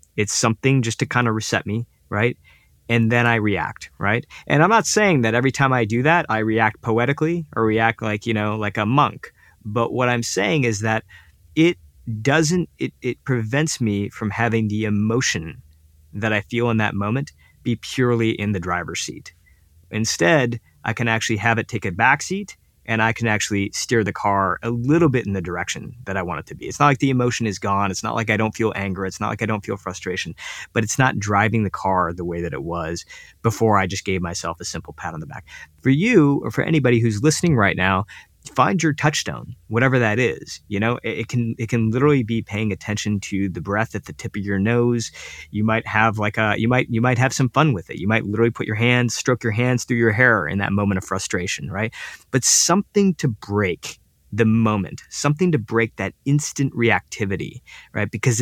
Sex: male